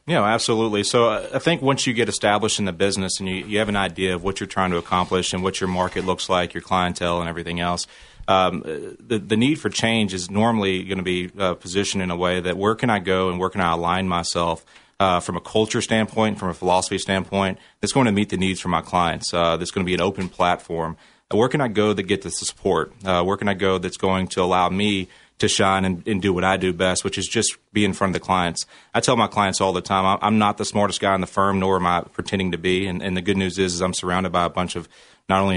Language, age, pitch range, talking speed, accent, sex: English, 30-49, 90-100 Hz, 270 wpm, American, male